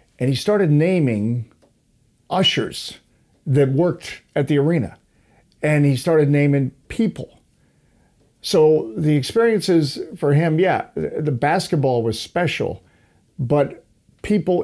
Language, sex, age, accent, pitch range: Japanese, male, 50-69, American, 125-165 Hz